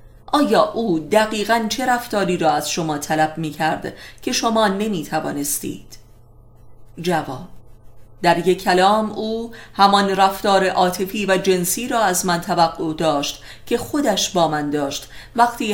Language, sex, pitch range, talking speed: Persian, female, 145-205 Hz, 135 wpm